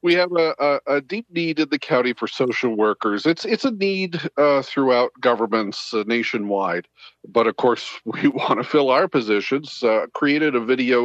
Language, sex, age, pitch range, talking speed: English, male, 40-59, 105-140 Hz, 185 wpm